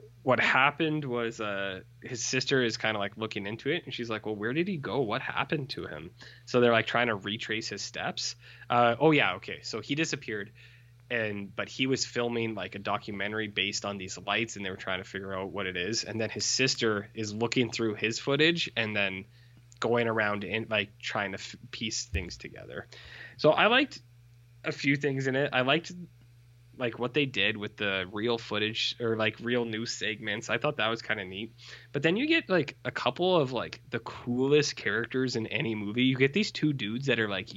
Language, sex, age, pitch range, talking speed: English, male, 20-39, 105-125 Hz, 215 wpm